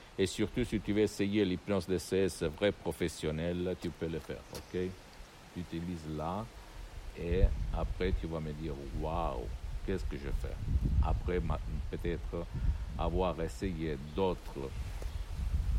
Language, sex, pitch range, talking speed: Italian, male, 85-105 Hz, 130 wpm